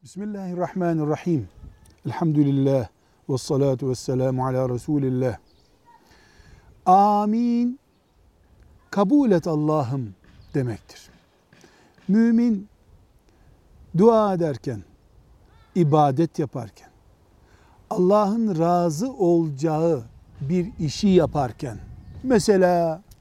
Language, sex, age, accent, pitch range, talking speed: Turkish, male, 60-79, native, 135-185 Hz, 60 wpm